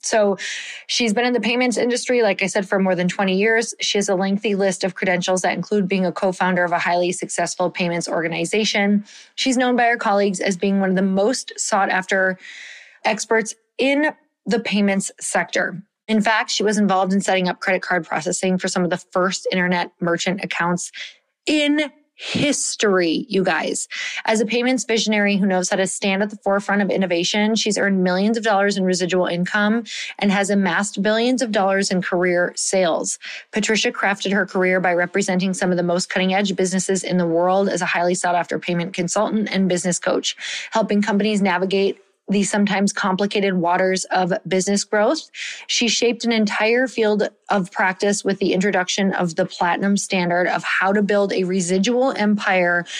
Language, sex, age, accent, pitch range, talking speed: English, female, 20-39, American, 185-220 Hz, 185 wpm